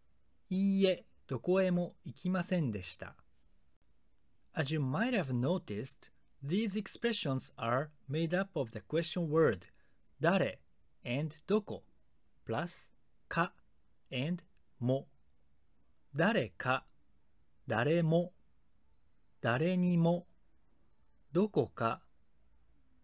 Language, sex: Japanese, male